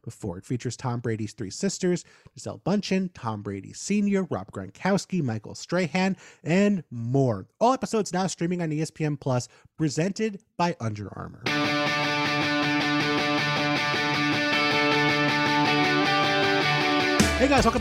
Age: 30-49